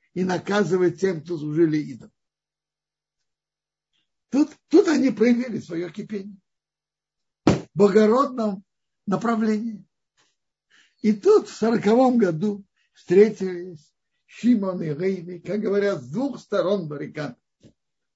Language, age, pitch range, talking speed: Russian, 60-79, 200-305 Hz, 100 wpm